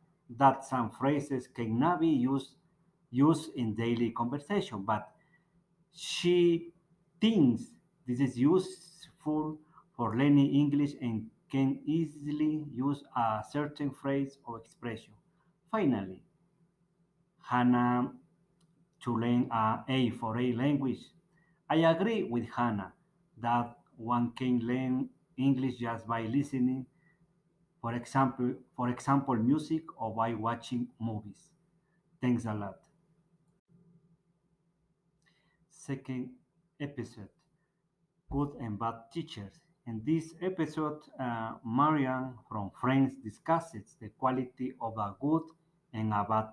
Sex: male